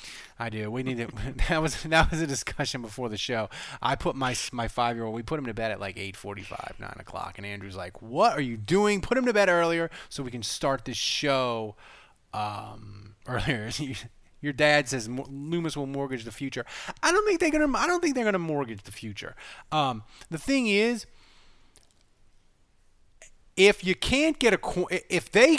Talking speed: 200 wpm